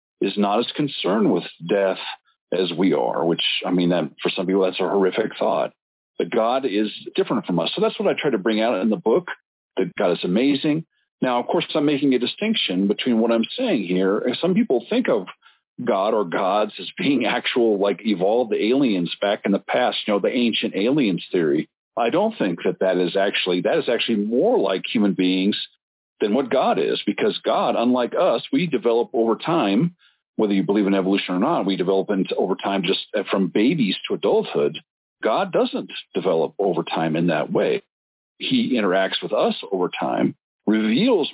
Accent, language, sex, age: American, English, male, 50-69